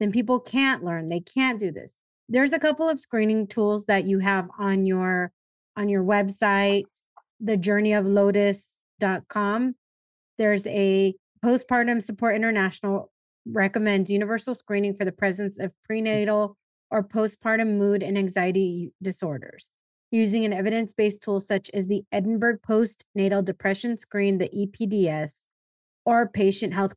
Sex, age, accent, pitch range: female, 30-49, American, 195-225 Hz